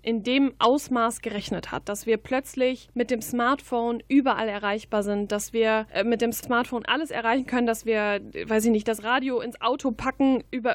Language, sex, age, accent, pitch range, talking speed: German, female, 10-29, German, 220-255 Hz, 185 wpm